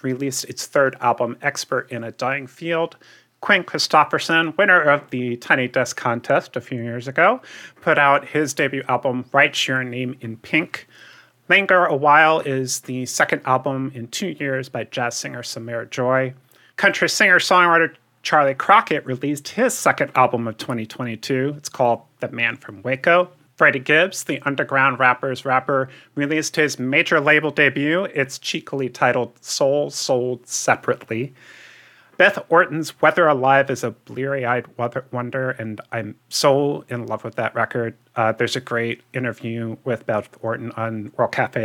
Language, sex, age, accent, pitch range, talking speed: English, male, 30-49, American, 120-150 Hz, 155 wpm